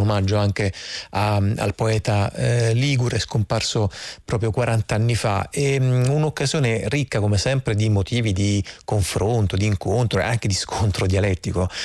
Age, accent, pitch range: 30-49, native, 105-125 Hz